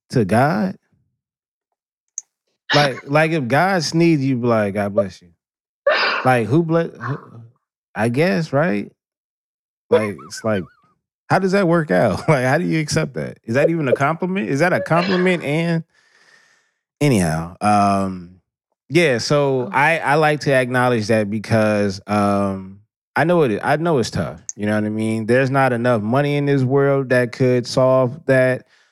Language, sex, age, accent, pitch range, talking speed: English, male, 20-39, American, 105-140 Hz, 160 wpm